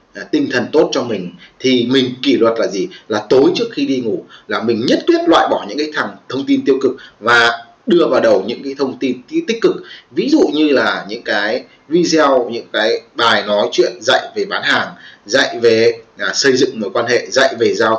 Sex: male